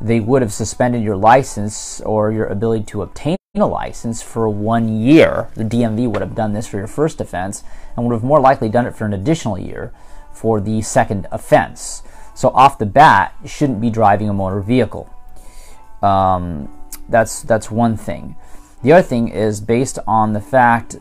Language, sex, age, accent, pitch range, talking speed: English, male, 30-49, American, 100-120 Hz, 185 wpm